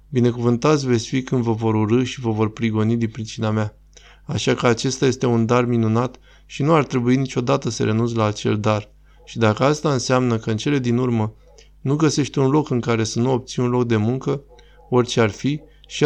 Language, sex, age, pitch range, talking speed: Romanian, male, 20-39, 110-130 Hz, 215 wpm